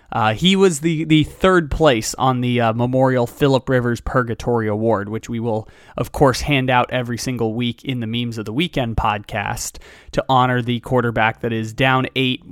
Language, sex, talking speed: English, male, 190 wpm